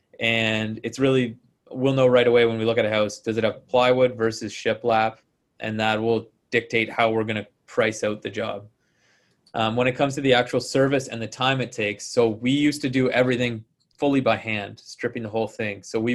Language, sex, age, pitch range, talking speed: English, male, 20-39, 110-120 Hz, 225 wpm